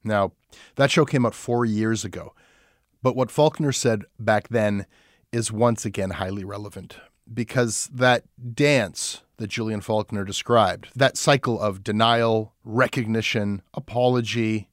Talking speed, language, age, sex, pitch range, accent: 130 wpm, English, 30-49, male, 105-130 Hz, American